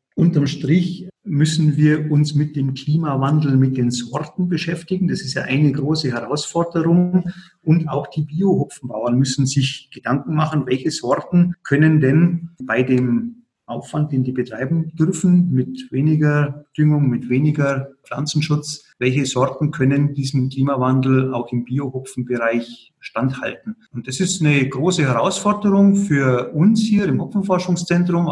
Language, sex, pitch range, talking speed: German, male, 130-165 Hz, 135 wpm